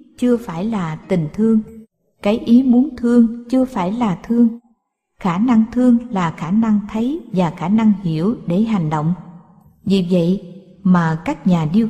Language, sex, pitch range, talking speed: Vietnamese, female, 180-225 Hz, 165 wpm